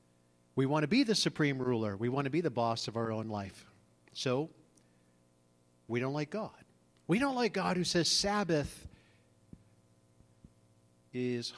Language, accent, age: English, American, 50-69